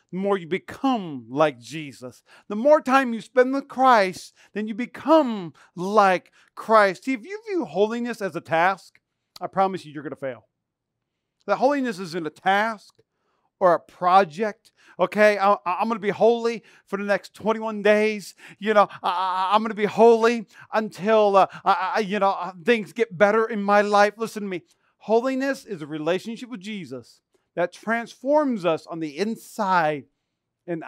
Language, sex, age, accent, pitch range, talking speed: English, male, 40-59, American, 160-215 Hz, 175 wpm